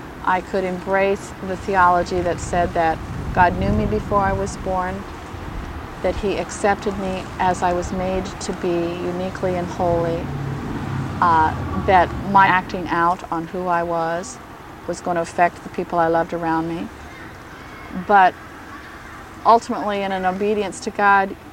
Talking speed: 150 wpm